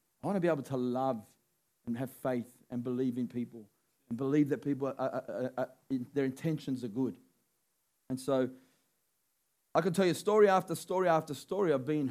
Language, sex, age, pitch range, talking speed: English, male, 40-59, 155-230 Hz, 195 wpm